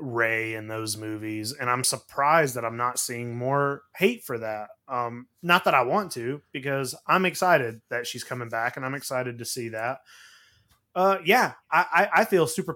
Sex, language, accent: male, English, American